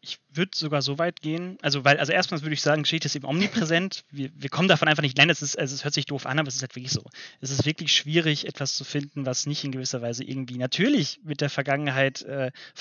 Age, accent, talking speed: 30-49, German, 260 wpm